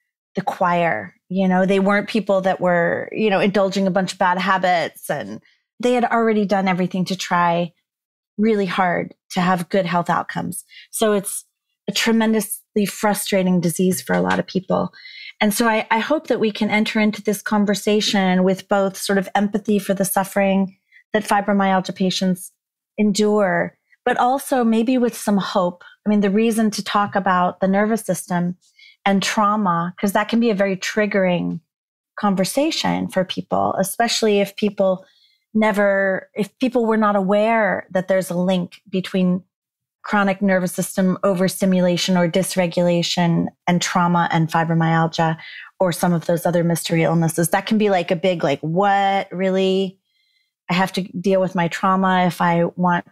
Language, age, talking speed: English, 30-49, 165 wpm